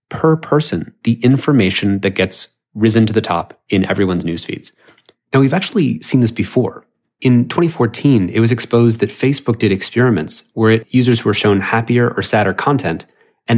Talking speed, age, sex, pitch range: 165 wpm, 30-49, male, 105-125 Hz